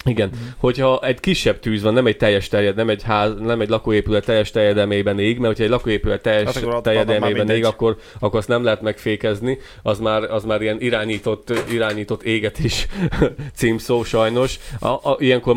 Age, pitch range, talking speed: 30-49, 105-115 Hz, 195 wpm